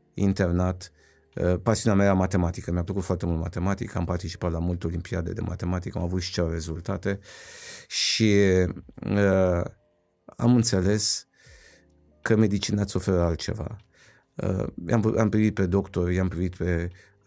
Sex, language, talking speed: male, Romanian, 140 wpm